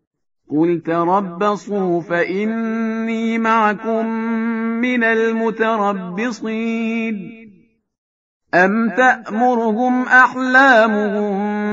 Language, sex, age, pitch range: Persian, male, 50-69, 190-225 Hz